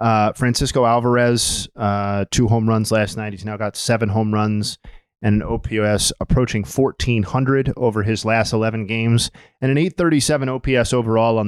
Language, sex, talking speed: English, male, 160 wpm